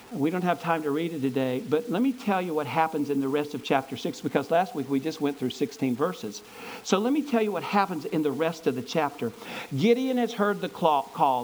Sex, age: male, 50-69